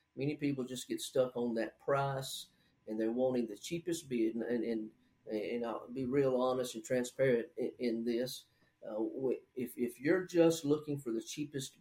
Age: 40-59